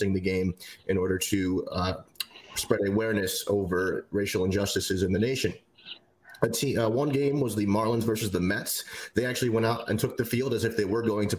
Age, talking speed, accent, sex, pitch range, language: 30-49, 195 wpm, American, male, 95-110 Hz, English